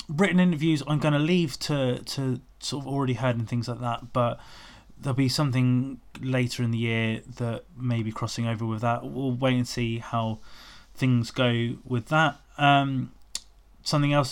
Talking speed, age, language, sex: 180 wpm, 20-39, English, male